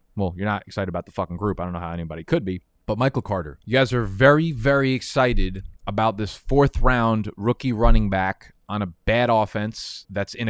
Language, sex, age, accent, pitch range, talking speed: English, male, 20-39, American, 105-130 Hz, 210 wpm